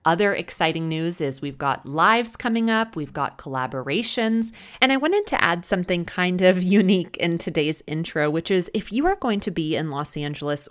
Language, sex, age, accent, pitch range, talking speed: English, female, 30-49, American, 145-185 Hz, 195 wpm